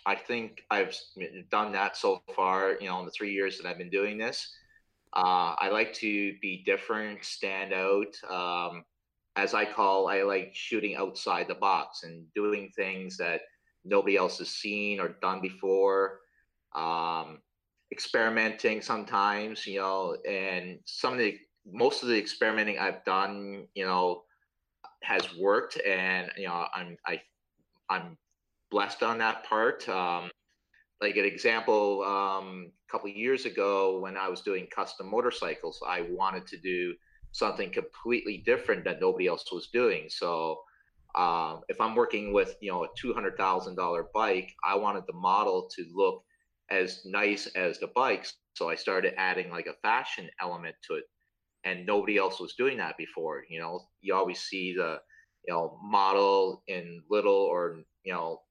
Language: English